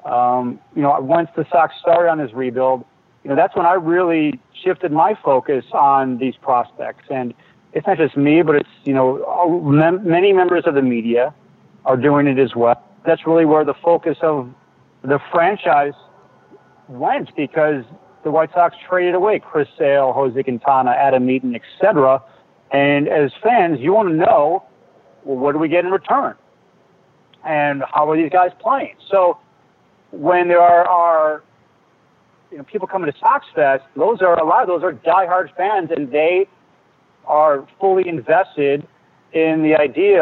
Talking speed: 165 wpm